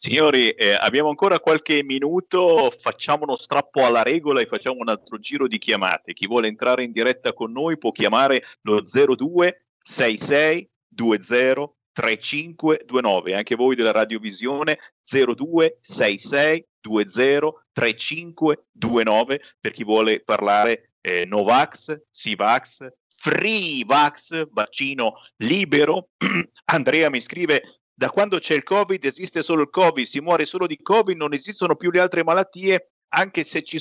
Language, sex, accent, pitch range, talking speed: Italian, male, native, 130-195 Hz, 125 wpm